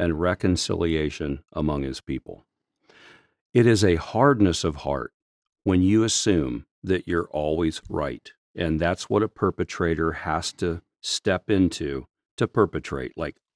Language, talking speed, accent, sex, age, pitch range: English, 135 wpm, American, male, 50-69, 85-115 Hz